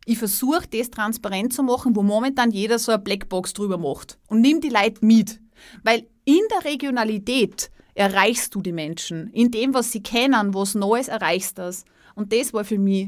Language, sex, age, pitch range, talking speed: German, female, 30-49, 200-265 Hz, 195 wpm